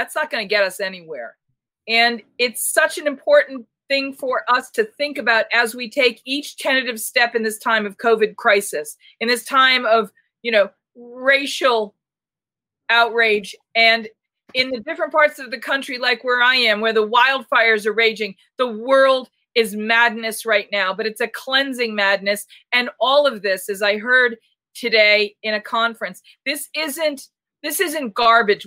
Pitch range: 215-265 Hz